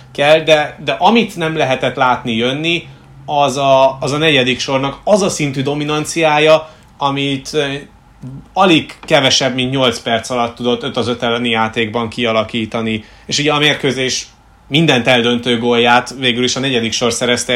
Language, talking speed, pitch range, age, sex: Hungarian, 150 wpm, 120-145 Hz, 30-49, male